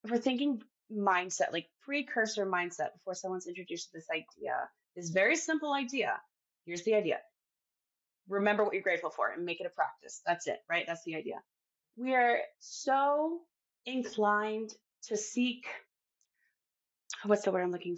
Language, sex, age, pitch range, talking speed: English, female, 20-39, 190-260 Hz, 155 wpm